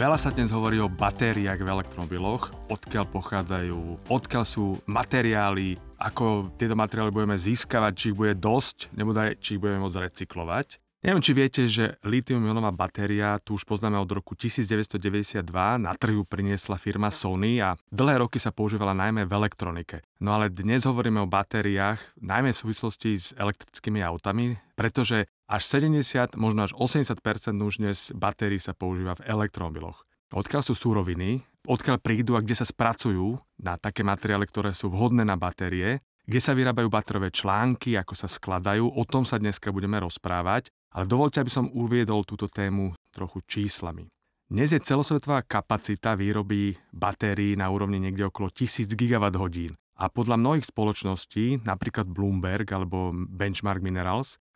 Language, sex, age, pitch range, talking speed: Slovak, male, 30-49, 95-115 Hz, 155 wpm